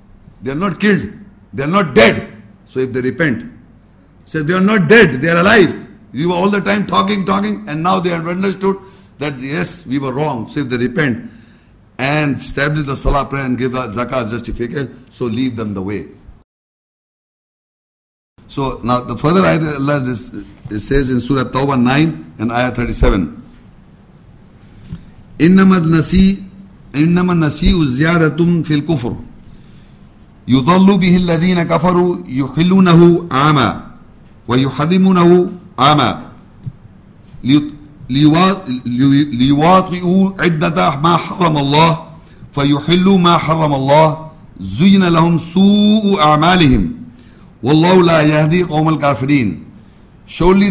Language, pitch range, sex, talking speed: English, 130-180 Hz, male, 125 wpm